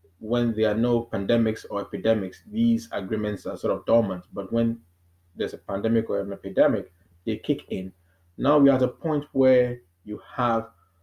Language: English